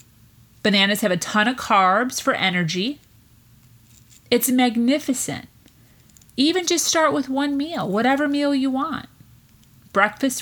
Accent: American